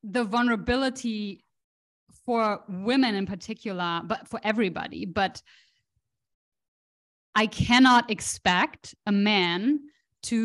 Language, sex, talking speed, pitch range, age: English, female, 90 wpm, 190-240 Hz, 20-39